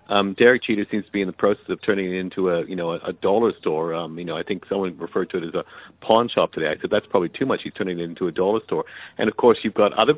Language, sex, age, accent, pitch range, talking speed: English, male, 50-69, American, 90-120 Hz, 310 wpm